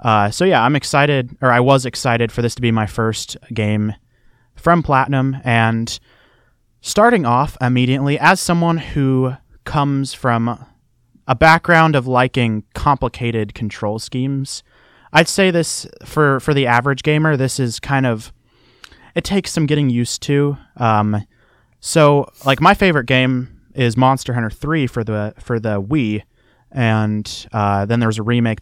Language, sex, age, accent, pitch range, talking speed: English, male, 30-49, American, 115-140 Hz, 155 wpm